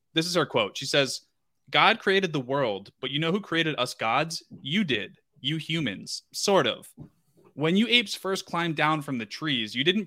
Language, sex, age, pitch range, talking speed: English, male, 20-39, 125-170 Hz, 205 wpm